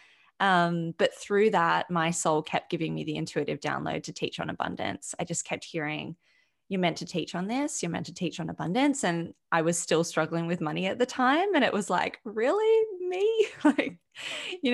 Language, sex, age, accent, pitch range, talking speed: English, female, 20-39, Australian, 160-195 Hz, 205 wpm